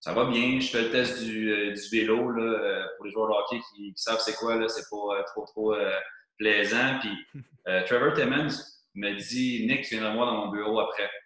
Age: 30-49